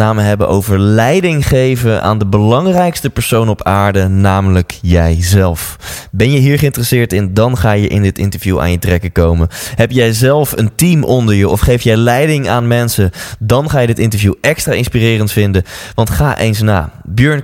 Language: Dutch